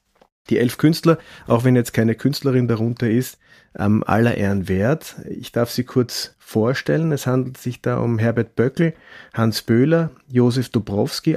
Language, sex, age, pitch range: German, male, 30-49, 105-125 Hz